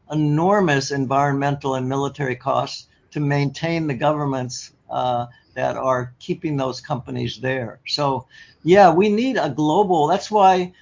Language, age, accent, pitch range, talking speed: English, 60-79, American, 130-155 Hz, 135 wpm